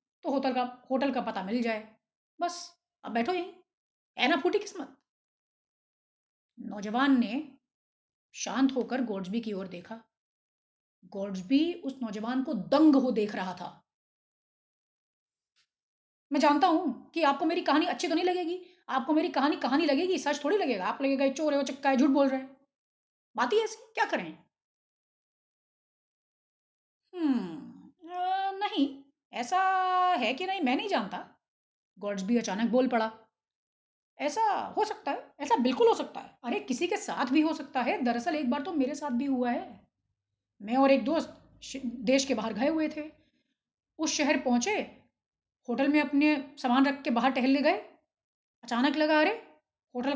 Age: 30-49